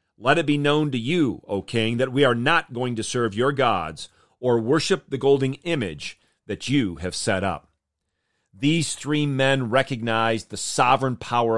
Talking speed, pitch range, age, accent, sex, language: 175 wpm, 115-155 Hz, 40-59, American, male, English